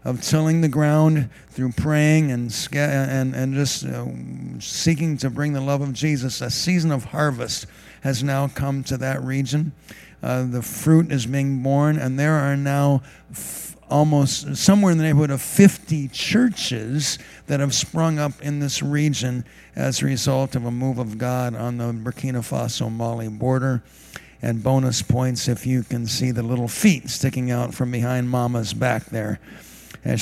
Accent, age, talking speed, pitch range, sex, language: American, 50-69, 170 wpm, 120-155 Hz, male, English